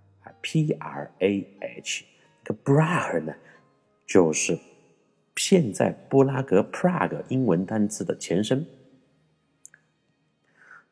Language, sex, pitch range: Chinese, male, 80-110 Hz